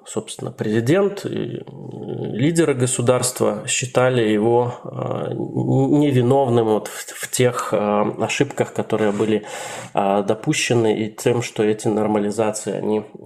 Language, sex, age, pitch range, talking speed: Russian, male, 20-39, 105-125 Hz, 80 wpm